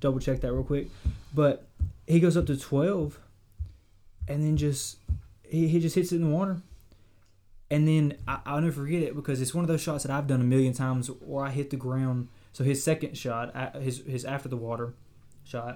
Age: 20-39